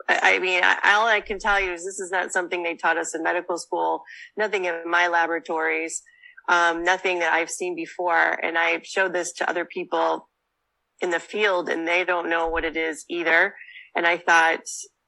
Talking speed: 195 wpm